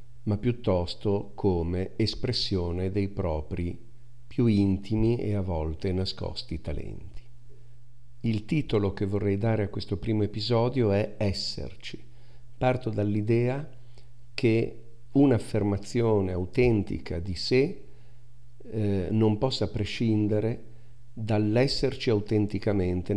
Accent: native